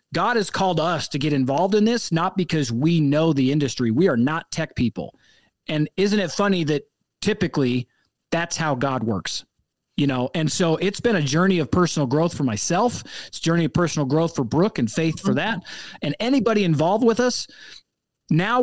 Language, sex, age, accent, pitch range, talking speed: English, male, 30-49, American, 140-185 Hz, 195 wpm